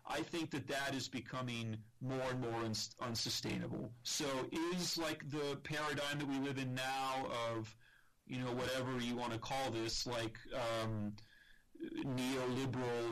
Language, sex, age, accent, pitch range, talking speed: English, male, 40-59, American, 115-140 Hz, 145 wpm